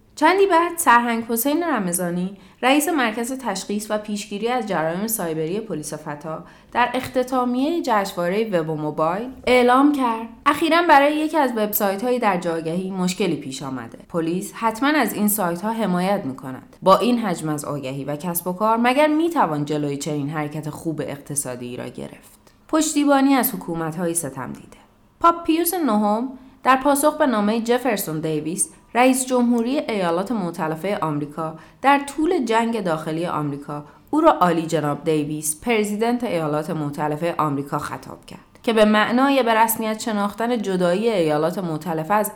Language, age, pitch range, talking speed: Persian, 20-39, 160-245 Hz, 145 wpm